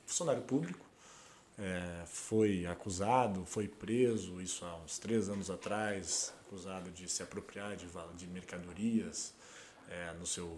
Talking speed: 130 wpm